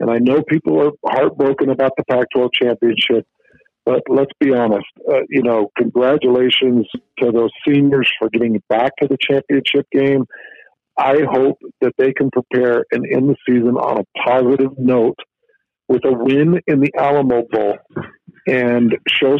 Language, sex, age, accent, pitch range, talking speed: English, male, 50-69, American, 120-150 Hz, 160 wpm